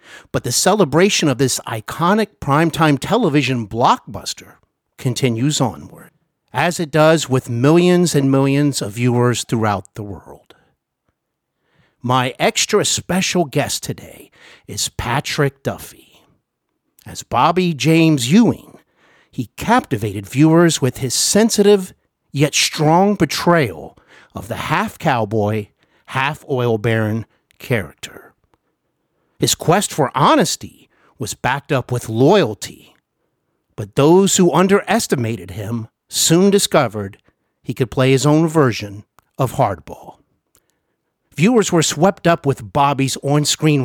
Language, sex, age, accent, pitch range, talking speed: English, male, 50-69, American, 120-170 Hz, 110 wpm